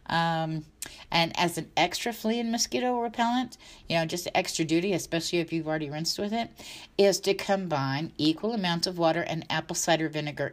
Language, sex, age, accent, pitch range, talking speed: English, female, 50-69, American, 150-195 Hz, 180 wpm